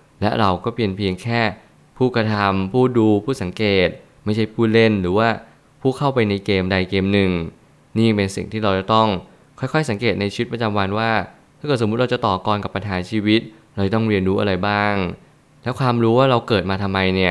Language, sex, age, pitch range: Thai, male, 20-39, 100-120 Hz